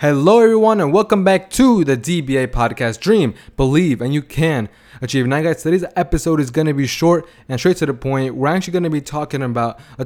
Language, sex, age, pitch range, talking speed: English, male, 20-39, 125-150 Hz, 220 wpm